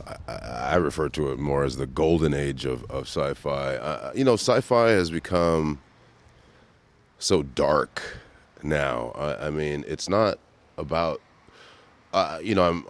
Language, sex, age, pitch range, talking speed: English, male, 30-49, 75-100 Hz, 150 wpm